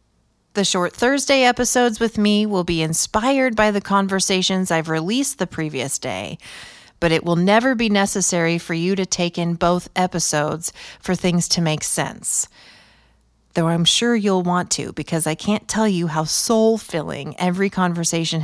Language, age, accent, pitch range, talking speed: English, 30-49, American, 155-205 Hz, 165 wpm